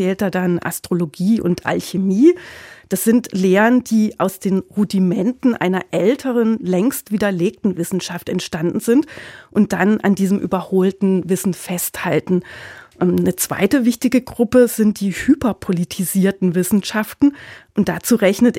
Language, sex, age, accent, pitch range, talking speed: German, female, 40-59, German, 180-220 Hz, 115 wpm